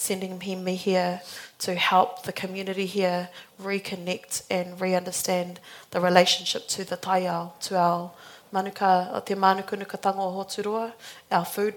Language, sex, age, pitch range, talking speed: English, female, 20-39, 180-200 Hz, 140 wpm